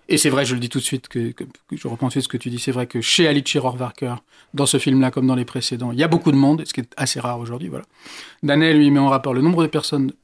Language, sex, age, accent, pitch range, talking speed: French, male, 40-59, French, 125-155 Hz, 330 wpm